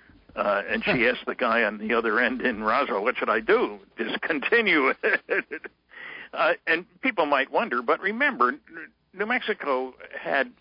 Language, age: English, 60-79